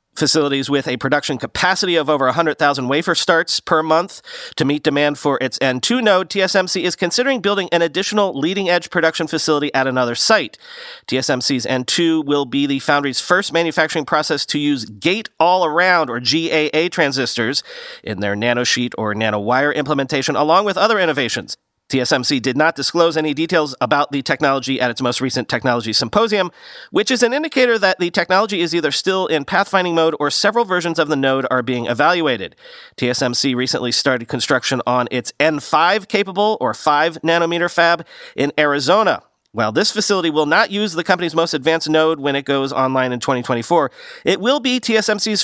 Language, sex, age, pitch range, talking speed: English, male, 40-59, 135-180 Hz, 170 wpm